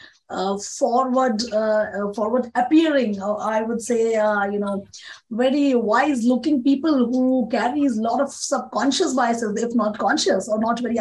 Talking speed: 155 wpm